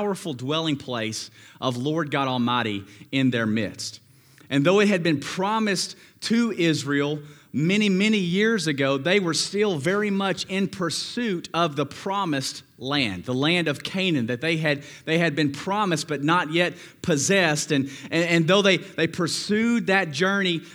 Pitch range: 140-190 Hz